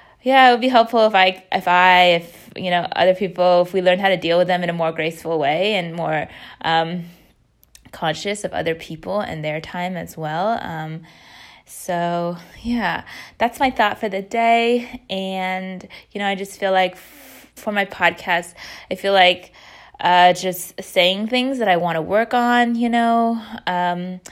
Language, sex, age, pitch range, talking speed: English, female, 20-39, 175-220 Hz, 185 wpm